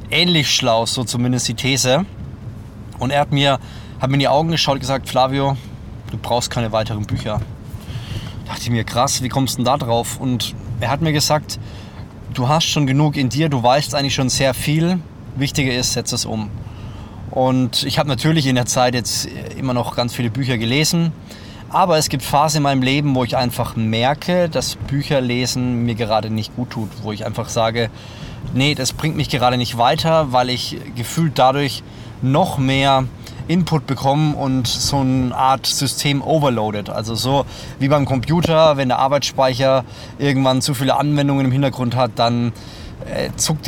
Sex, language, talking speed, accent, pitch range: male, German, 180 wpm, German, 115-145 Hz